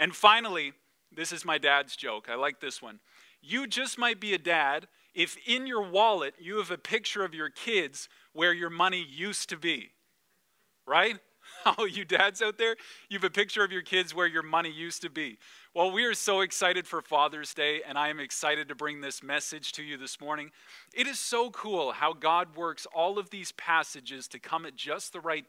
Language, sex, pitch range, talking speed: English, male, 150-180 Hz, 210 wpm